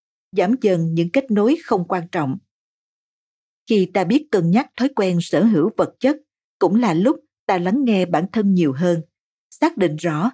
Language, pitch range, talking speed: Vietnamese, 170-240 Hz, 185 wpm